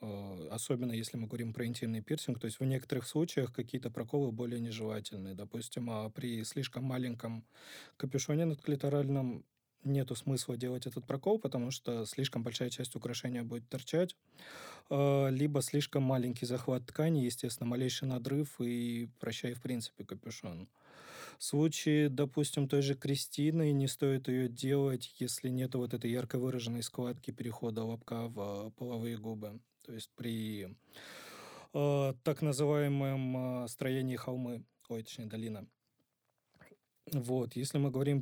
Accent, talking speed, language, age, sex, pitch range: native, 140 wpm, Russian, 20-39, male, 115-140 Hz